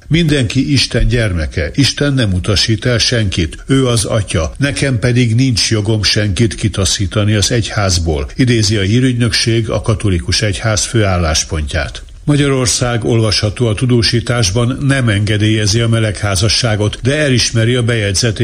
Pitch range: 100-125 Hz